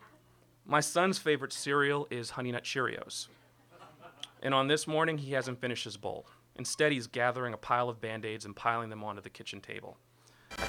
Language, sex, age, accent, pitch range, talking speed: English, male, 30-49, American, 115-145 Hz, 180 wpm